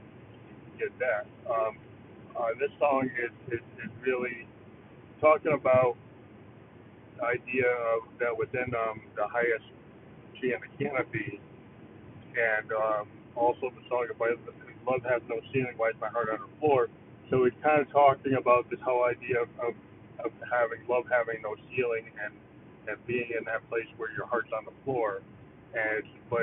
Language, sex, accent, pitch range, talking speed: English, male, American, 110-130 Hz, 160 wpm